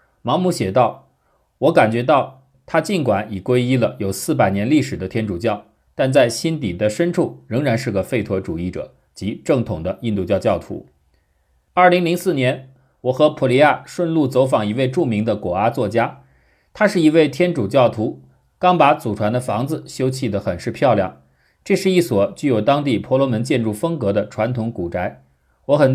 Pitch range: 100-155 Hz